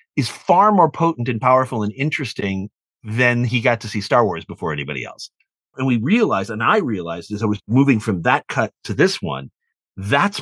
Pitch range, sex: 110-140 Hz, male